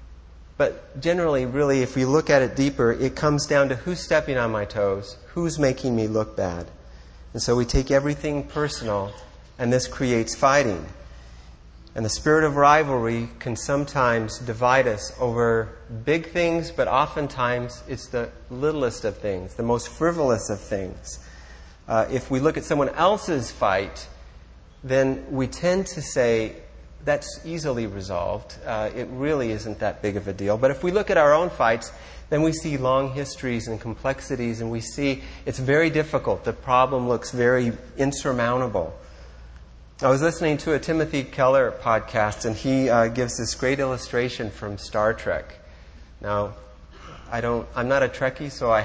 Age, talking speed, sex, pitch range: 40-59, 165 wpm, male, 110-145 Hz